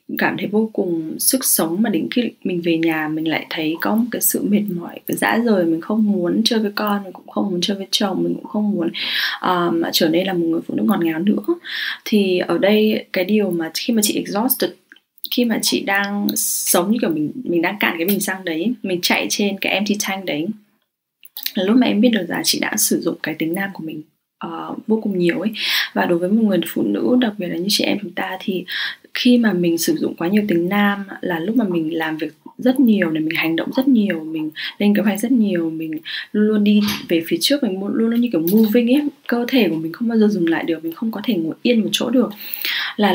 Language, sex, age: English, female, 10-29